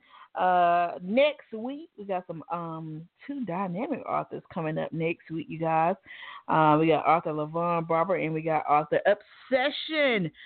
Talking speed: 155 wpm